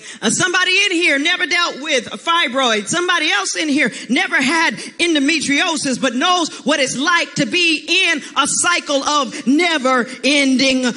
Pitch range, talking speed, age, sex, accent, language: 280-390 Hz, 155 wpm, 40-59, female, American, English